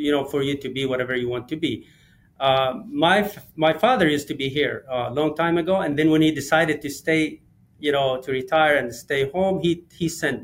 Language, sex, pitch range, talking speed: English, male, 135-170 Hz, 235 wpm